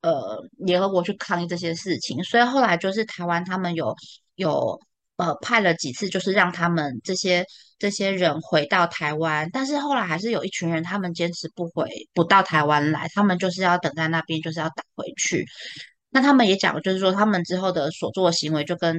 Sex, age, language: female, 20-39, Chinese